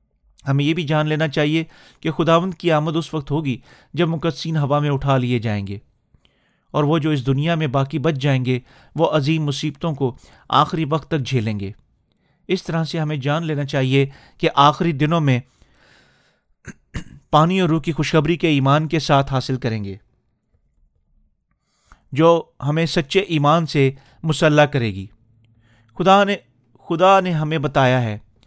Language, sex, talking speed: Urdu, male, 165 wpm